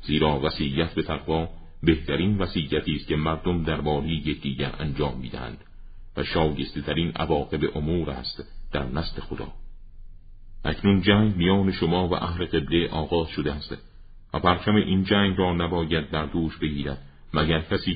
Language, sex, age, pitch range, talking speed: Persian, male, 50-69, 75-85 Hz, 145 wpm